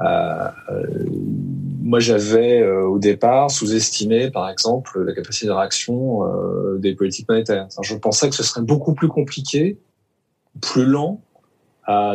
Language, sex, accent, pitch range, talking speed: French, male, French, 105-140 Hz, 150 wpm